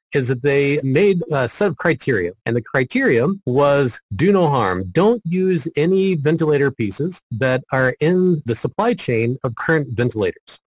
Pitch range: 125-170 Hz